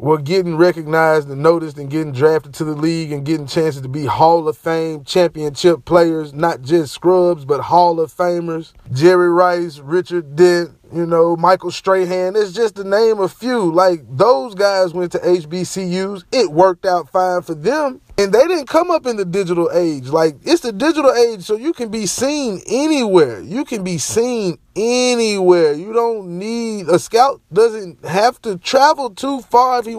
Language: English